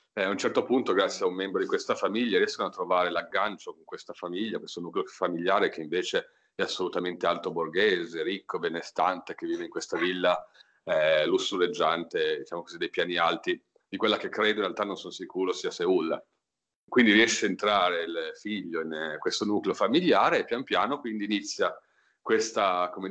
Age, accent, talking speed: 40-59, native, 185 wpm